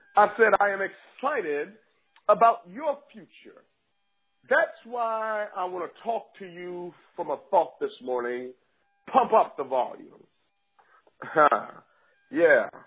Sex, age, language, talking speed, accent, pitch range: male, 40-59, English, 120 wpm, American, 185-260 Hz